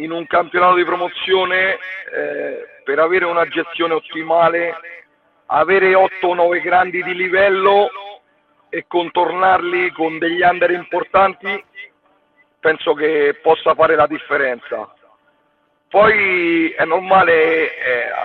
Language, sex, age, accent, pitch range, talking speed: Italian, male, 40-59, native, 170-200 Hz, 110 wpm